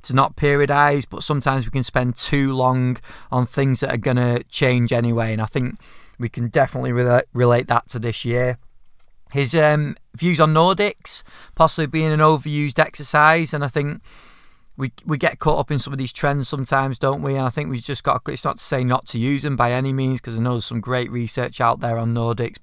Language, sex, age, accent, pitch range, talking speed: English, male, 30-49, British, 120-145 Hz, 225 wpm